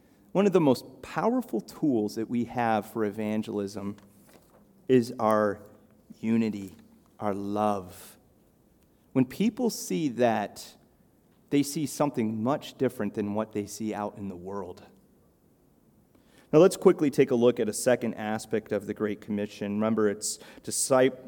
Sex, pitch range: male, 110-150 Hz